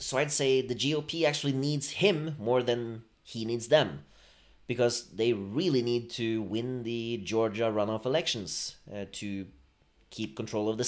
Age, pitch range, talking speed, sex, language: 30-49, 105-145 Hz, 160 wpm, male, English